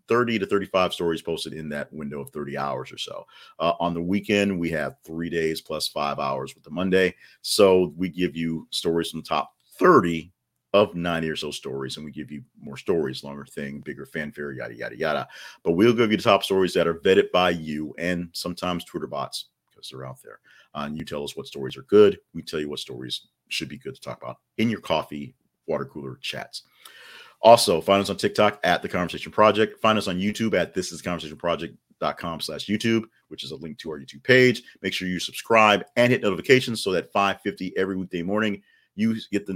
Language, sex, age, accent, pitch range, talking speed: English, male, 40-59, American, 75-100 Hz, 210 wpm